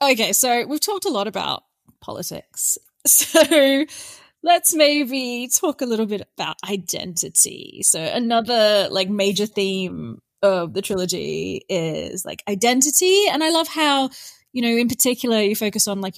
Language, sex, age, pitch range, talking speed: English, female, 20-39, 195-260 Hz, 150 wpm